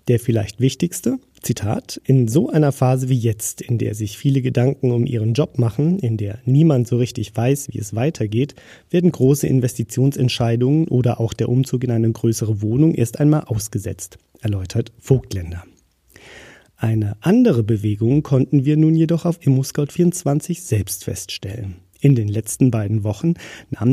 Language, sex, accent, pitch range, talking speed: German, male, German, 110-140 Hz, 155 wpm